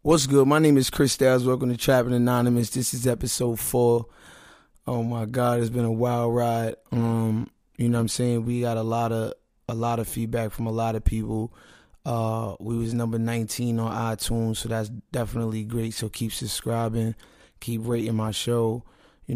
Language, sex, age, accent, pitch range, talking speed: English, male, 20-39, American, 110-125 Hz, 190 wpm